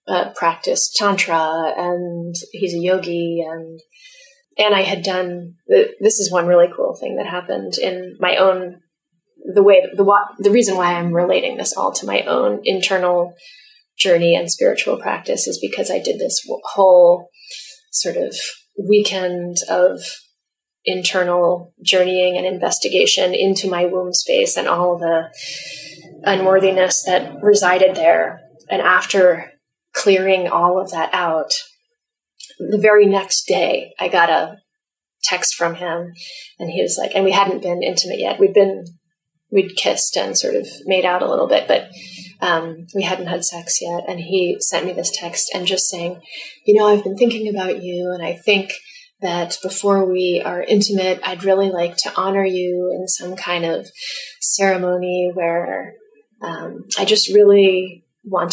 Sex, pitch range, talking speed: female, 175-210 Hz, 155 wpm